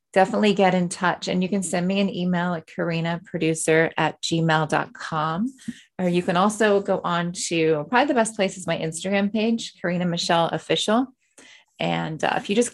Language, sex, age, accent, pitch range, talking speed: English, female, 20-39, American, 170-215 Hz, 185 wpm